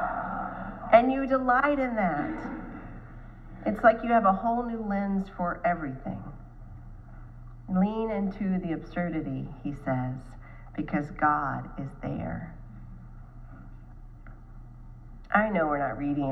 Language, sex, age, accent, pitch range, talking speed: English, female, 40-59, American, 120-185 Hz, 110 wpm